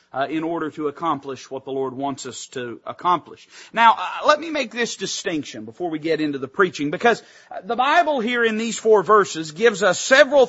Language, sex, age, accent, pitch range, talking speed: English, male, 40-59, American, 190-235 Hz, 205 wpm